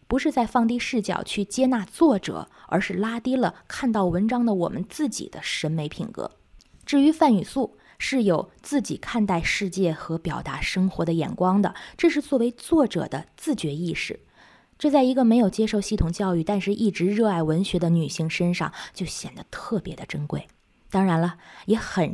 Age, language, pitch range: 20-39, Chinese, 175-235 Hz